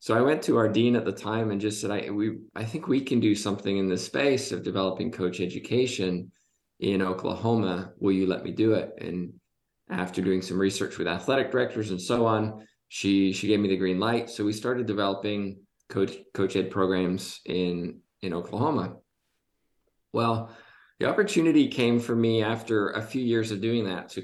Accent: American